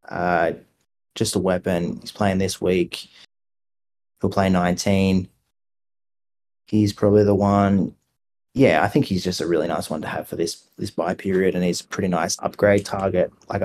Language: English